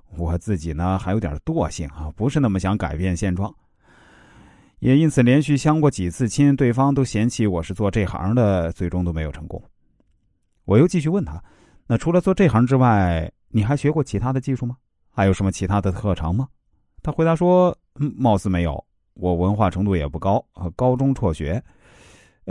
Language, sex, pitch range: Chinese, male, 90-130 Hz